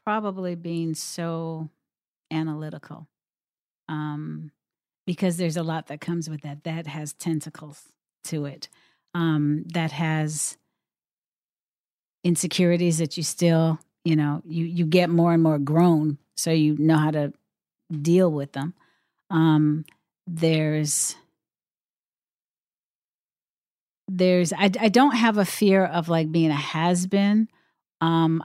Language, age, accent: English, 40-59, American